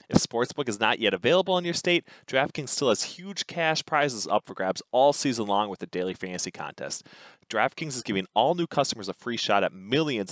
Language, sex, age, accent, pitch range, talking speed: English, male, 30-49, American, 95-145 Hz, 215 wpm